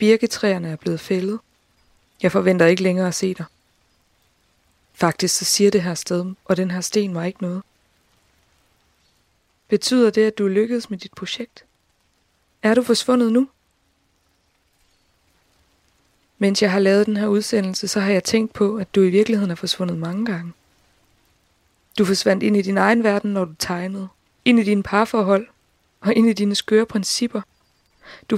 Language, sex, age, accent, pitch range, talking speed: Danish, female, 20-39, native, 165-215 Hz, 165 wpm